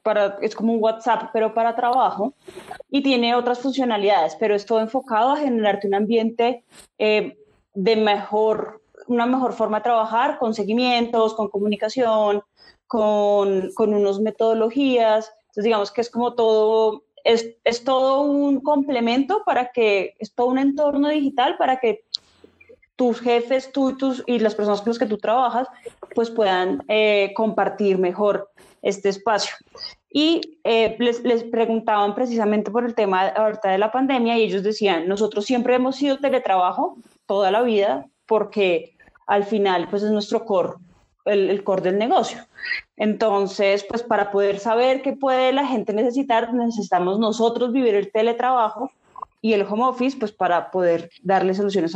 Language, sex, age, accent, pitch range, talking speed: Spanish, female, 20-39, Colombian, 205-250 Hz, 155 wpm